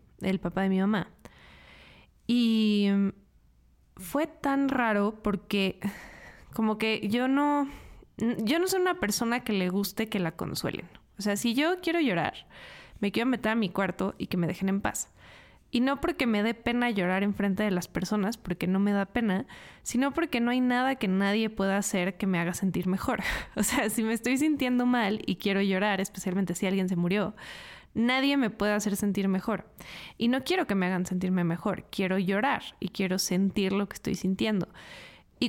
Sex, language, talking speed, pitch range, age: female, Spanish, 190 wpm, 195-245 Hz, 20-39